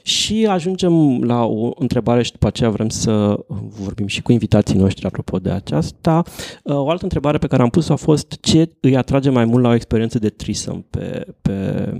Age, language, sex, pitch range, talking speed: 30-49, Romanian, male, 105-140 Hz, 195 wpm